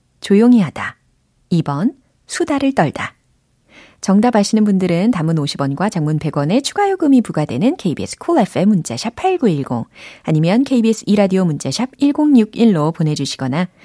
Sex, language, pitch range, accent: female, Korean, 150-245 Hz, native